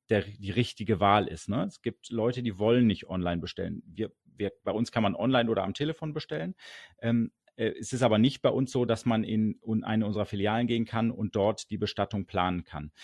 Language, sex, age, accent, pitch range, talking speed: German, male, 40-59, German, 105-120 Hz, 205 wpm